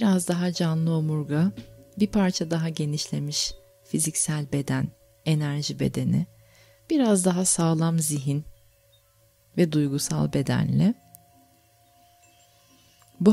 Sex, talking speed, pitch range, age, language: female, 90 wpm, 110-165 Hz, 30-49, Turkish